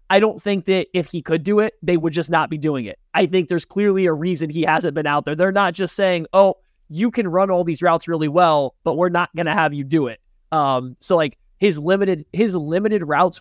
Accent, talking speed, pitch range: American, 255 wpm, 150-185 Hz